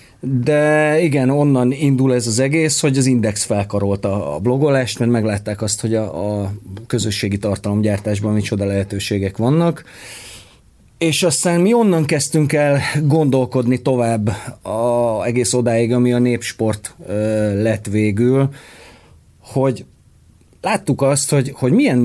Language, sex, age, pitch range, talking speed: Hungarian, male, 30-49, 110-150 Hz, 125 wpm